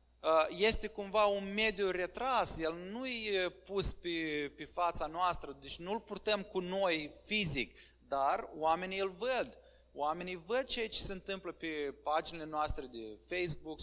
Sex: male